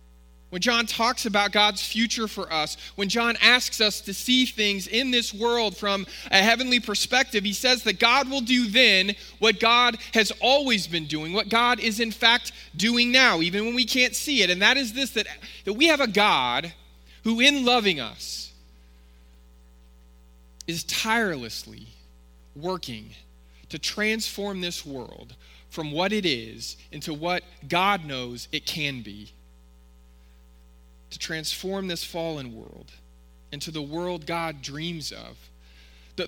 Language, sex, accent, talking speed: English, male, American, 150 wpm